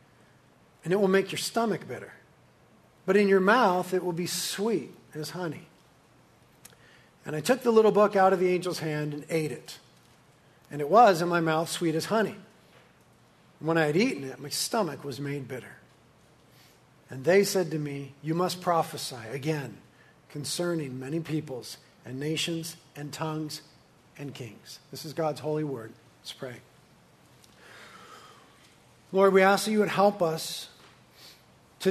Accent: American